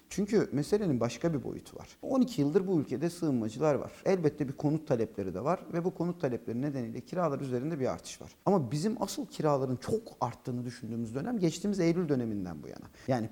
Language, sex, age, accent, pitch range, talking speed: Turkish, male, 40-59, native, 125-195 Hz, 190 wpm